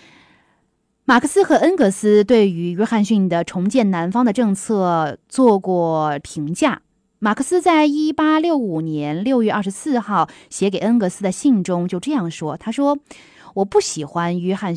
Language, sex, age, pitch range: Chinese, female, 20-39, 170-255 Hz